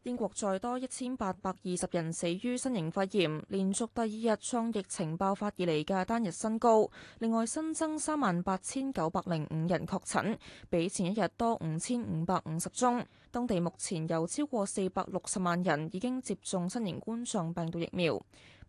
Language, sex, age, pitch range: Chinese, female, 20-39, 170-225 Hz